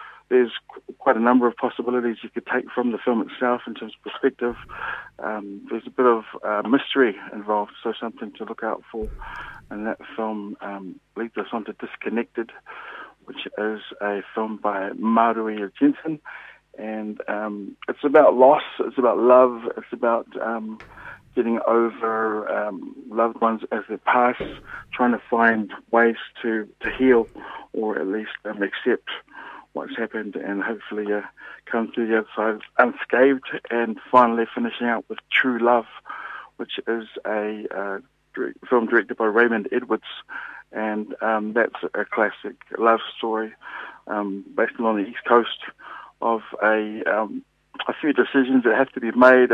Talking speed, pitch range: 155 wpm, 110-120 Hz